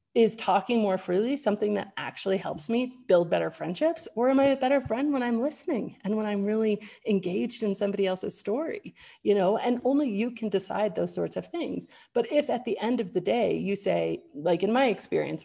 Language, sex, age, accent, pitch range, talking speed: English, female, 30-49, American, 185-250 Hz, 215 wpm